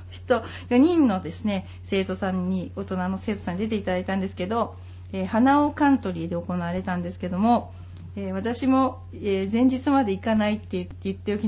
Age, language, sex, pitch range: 40-59, Japanese, female, 175-255 Hz